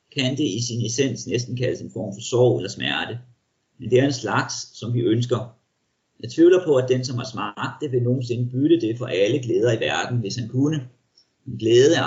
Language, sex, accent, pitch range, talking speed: Danish, male, native, 120-145 Hz, 225 wpm